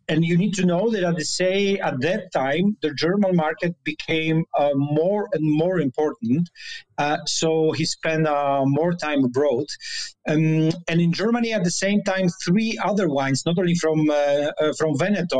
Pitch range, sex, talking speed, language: 145-190 Hz, male, 185 wpm, English